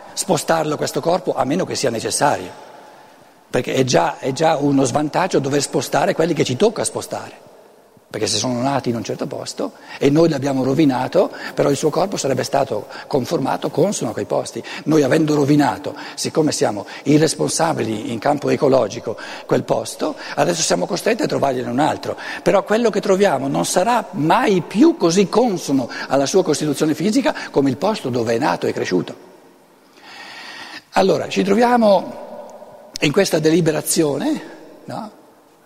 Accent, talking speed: native, 155 wpm